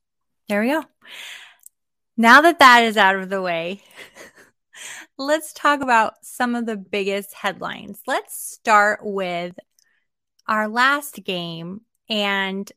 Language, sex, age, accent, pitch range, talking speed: English, female, 20-39, American, 195-250 Hz, 120 wpm